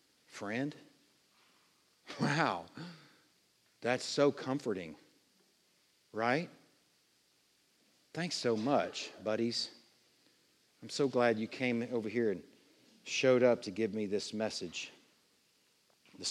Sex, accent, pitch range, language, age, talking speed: male, American, 105-130 Hz, English, 50-69, 95 wpm